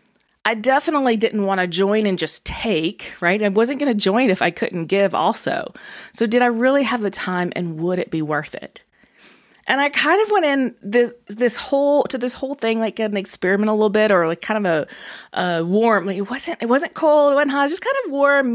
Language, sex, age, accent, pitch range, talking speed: English, female, 20-39, American, 195-270 Hz, 235 wpm